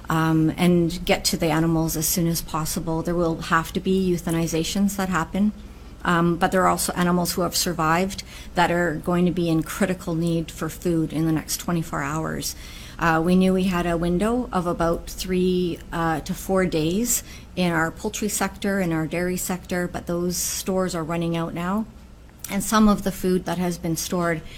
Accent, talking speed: American, 195 wpm